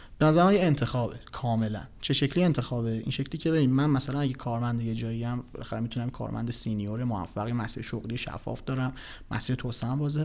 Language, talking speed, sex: Persian, 165 wpm, male